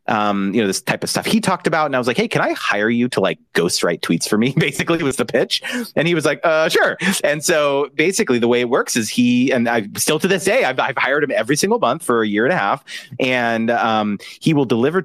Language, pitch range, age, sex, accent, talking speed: English, 105-145 Hz, 30-49, male, American, 270 wpm